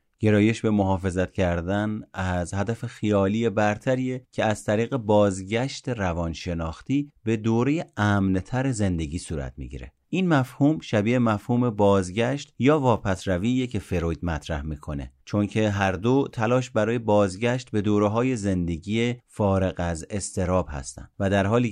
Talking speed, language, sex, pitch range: 130 wpm, Persian, male, 90-120 Hz